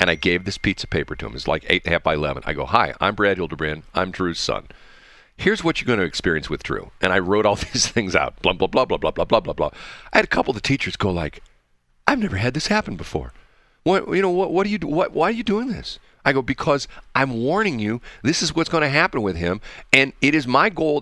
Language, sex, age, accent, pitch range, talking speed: English, male, 40-59, American, 90-130 Hz, 270 wpm